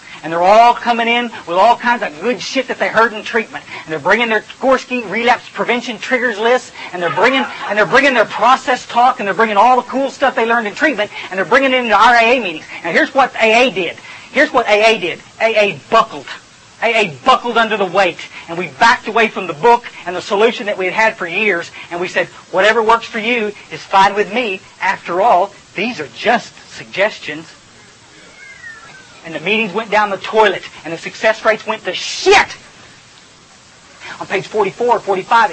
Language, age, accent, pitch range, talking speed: English, 40-59, American, 210-295 Hz, 205 wpm